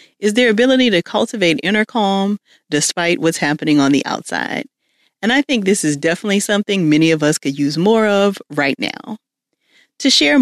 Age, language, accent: 40-59, English, American